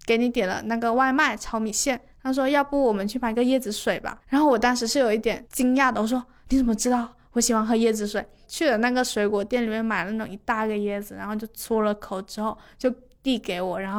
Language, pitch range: Chinese, 210-245 Hz